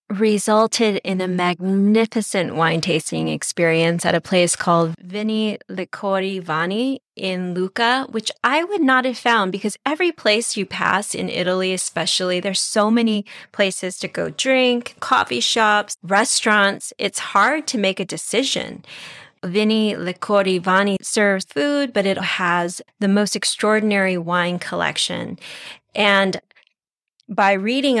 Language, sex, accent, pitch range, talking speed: English, female, American, 185-220 Hz, 135 wpm